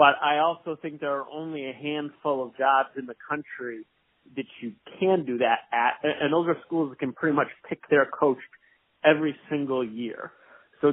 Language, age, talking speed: English, 30-49, 190 wpm